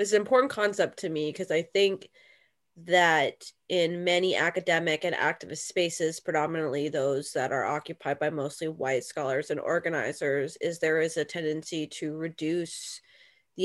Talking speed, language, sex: 155 wpm, English, female